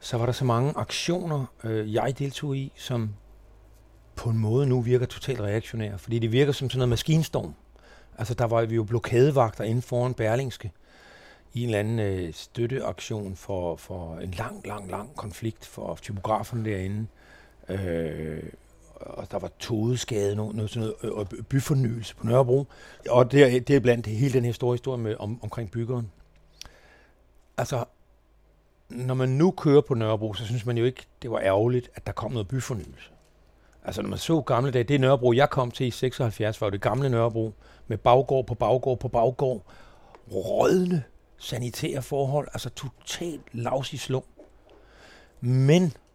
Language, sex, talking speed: Danish, male, 170 wpm